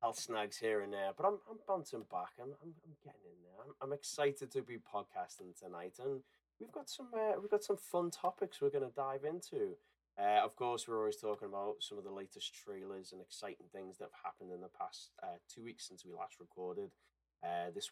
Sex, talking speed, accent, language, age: male, 230 wpm, British, English, 20-39